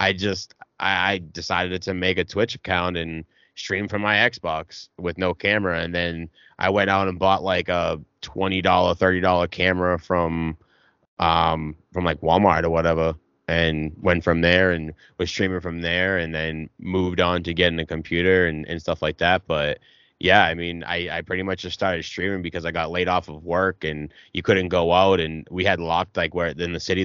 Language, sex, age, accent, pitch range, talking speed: English, male, 20-39, American, 80-95 Hz, 200 wpm